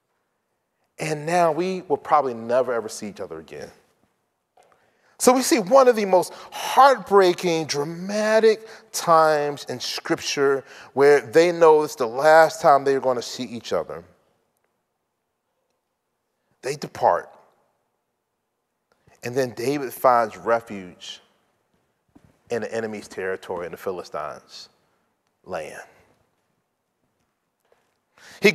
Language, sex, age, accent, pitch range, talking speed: English, male, 30-49, American, 170-240 Hz, 110 wpm